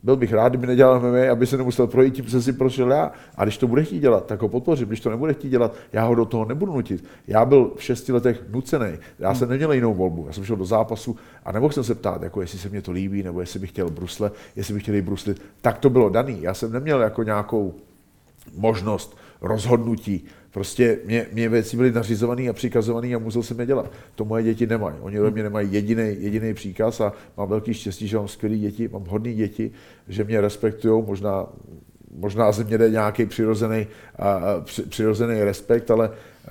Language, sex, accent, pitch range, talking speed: Czech, male, native, 105-125 Hz, 215 wpm